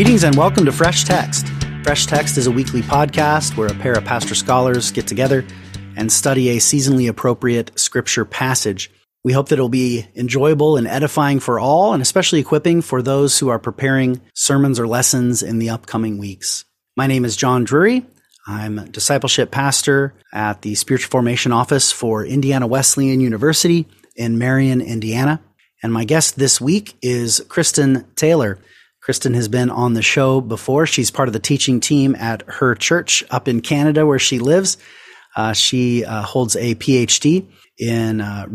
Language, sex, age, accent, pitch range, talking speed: English, male, 30-49, American, 115-140 Hz, 175 wpm